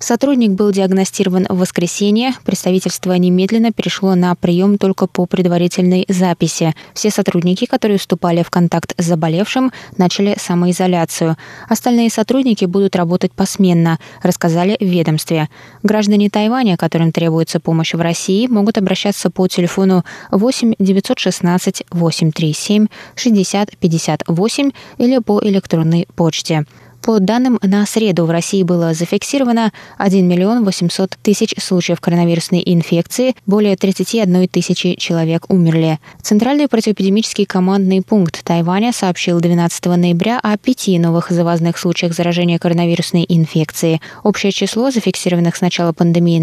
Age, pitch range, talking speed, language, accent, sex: 20-39, 175-210 Hz, 120 wpm, Russian, native, female